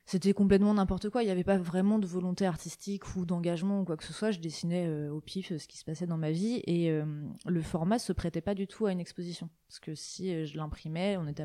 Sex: female